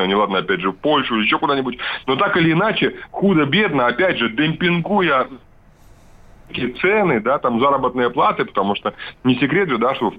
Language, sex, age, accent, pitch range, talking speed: Russian, male, 30-49, native, 125-185 Hz, 170 wpm